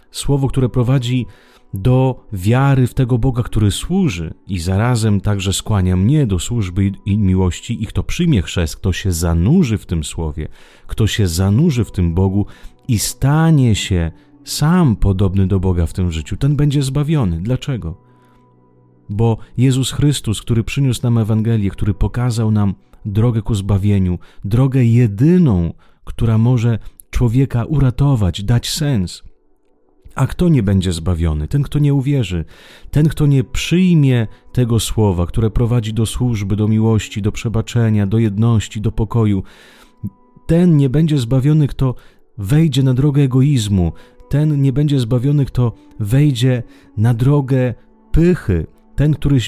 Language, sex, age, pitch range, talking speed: Italian, male, 30-49, 100-135 Hz, 140 wpm